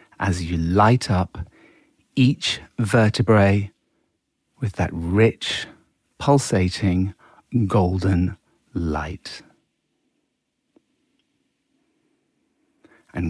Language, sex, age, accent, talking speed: English, male, 40-59, British, 60 wpm